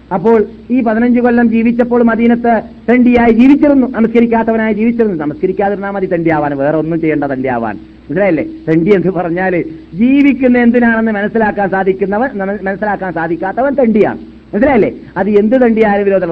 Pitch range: 160-230 Hz